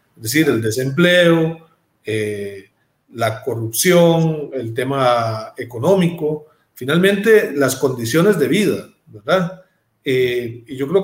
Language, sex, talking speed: Spanish, male, 110 wpm